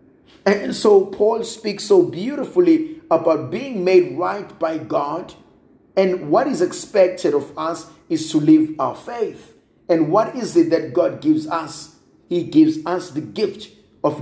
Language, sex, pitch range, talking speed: English, male, 155-215 Hz, 155 wpm